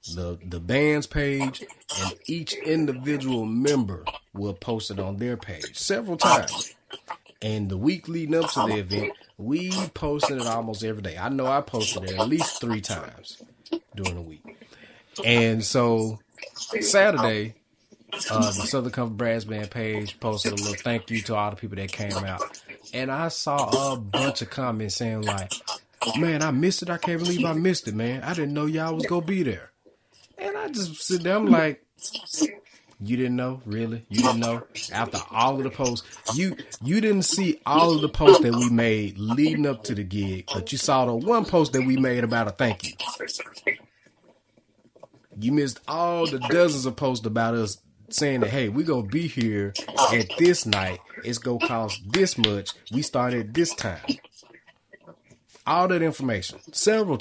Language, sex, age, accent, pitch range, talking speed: English, male, 30-49, American, 110-150 Hz, 185 wpm